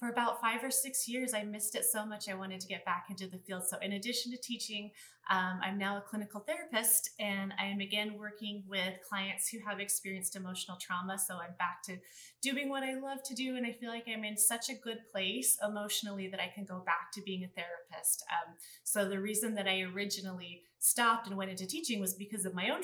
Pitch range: 190-230 Hz